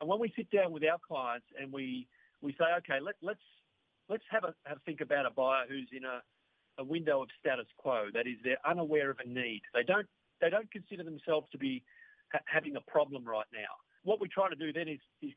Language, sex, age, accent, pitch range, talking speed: English, male, 50-69, Australian, 130-185 Hz, 240 wpm